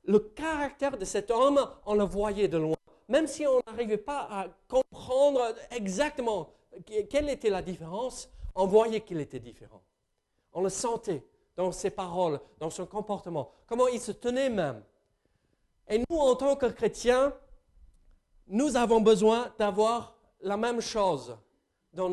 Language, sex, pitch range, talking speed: French, male, 185-255 Hz, 150 wpm